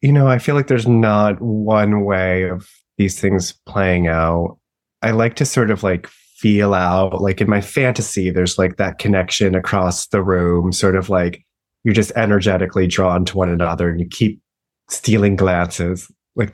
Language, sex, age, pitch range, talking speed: English, male, 20-39, 90-115 Hz, 180 wpm